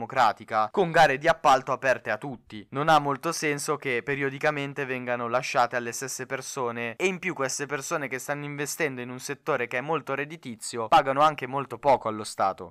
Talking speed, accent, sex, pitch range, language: 185 wpm, native, male, 125-165 Hz, Italian